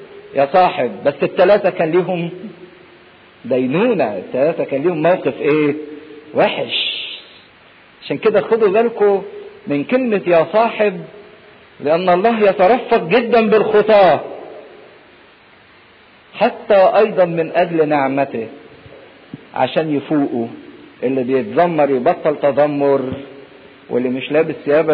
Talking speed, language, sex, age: 100 wpm, English, male, 50-69